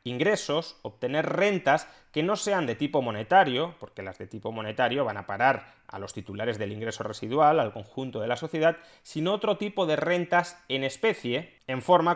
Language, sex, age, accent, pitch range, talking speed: Spanish, male, 20-39, Spanish, 115-155 Hz, 185 wpm